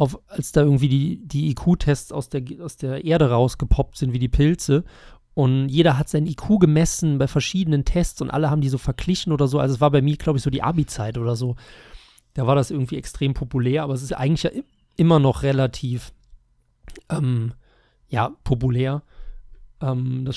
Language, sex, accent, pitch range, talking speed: German, male, German, 125-150 Hz, 185 wpm